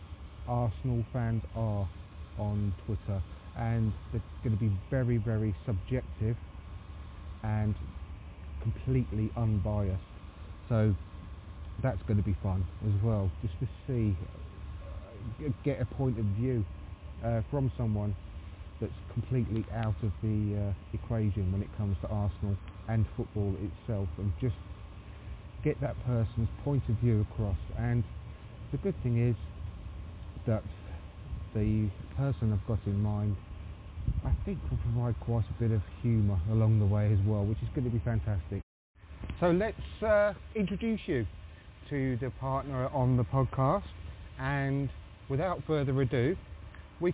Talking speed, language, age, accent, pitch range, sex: 135 wpm, English, 30-49, British, 90-120 Hz, male